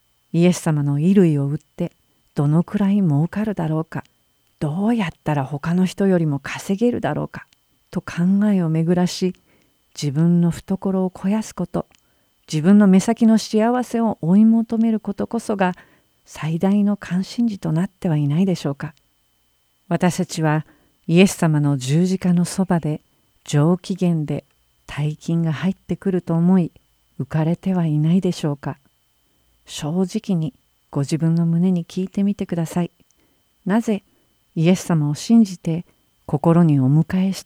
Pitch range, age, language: 150-190 Hz, 50-69, Japanese